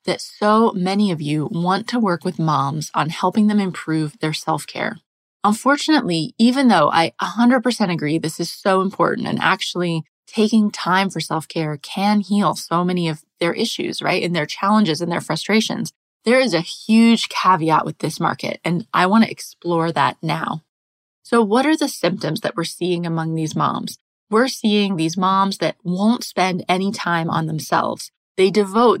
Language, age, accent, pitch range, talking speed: English, 20-39, American, 165-210 Hz, 175 wpm